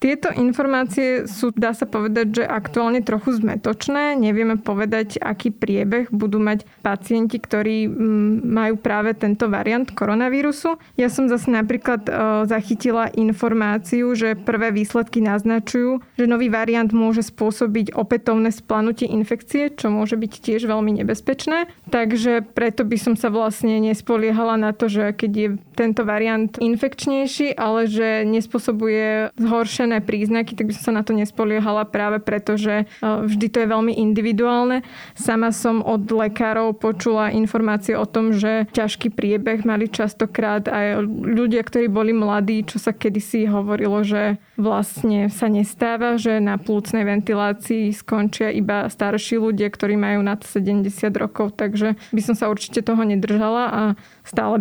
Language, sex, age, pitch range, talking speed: Slovak, female, 20-39, 215-235 Hz, 140 wpm